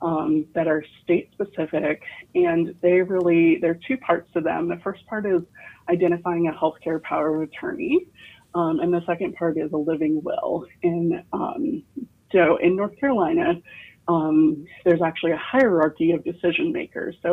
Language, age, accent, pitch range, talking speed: English, 30-49, American, 165-210 Hz, 165 wpm